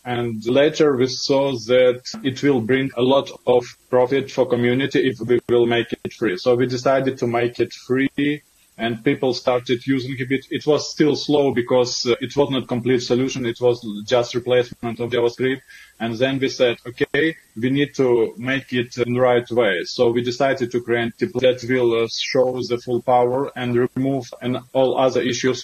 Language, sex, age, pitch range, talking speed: English, male, 20-39, 120-130 Hz, 185 wpm